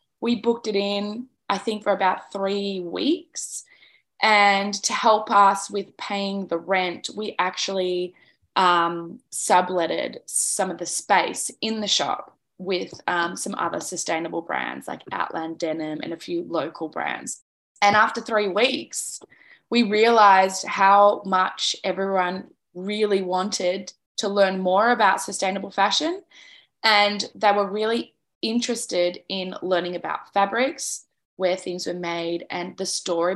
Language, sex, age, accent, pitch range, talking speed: English, female, 20-39, Australian, 185-225 Hz, 135 wpm